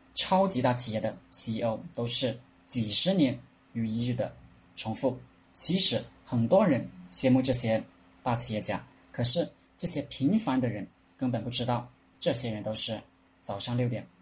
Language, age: Chinese, 20-39